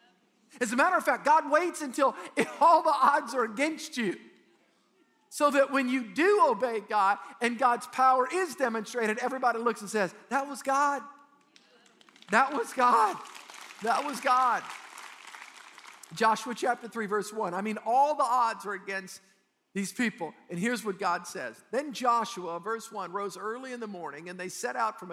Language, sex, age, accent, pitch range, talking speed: English, male, 50-69, American, 200-255 Hz, 170 wpm